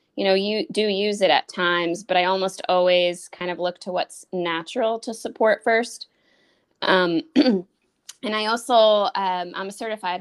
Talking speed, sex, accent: 170 wpm, female, American